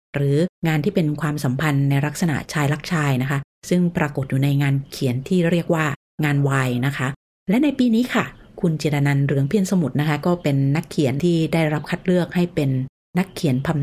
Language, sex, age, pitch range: Thai, female, 30-49, 140-170 Hz